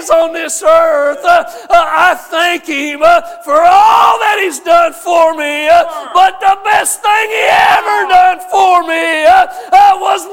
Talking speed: 165 wpm